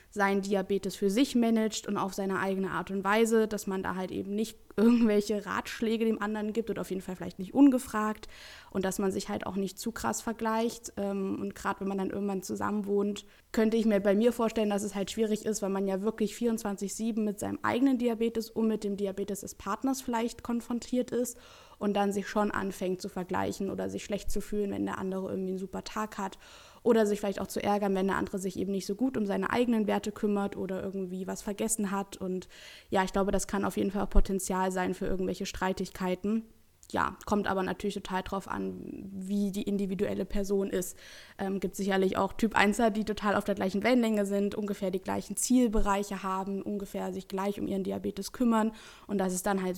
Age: 20-39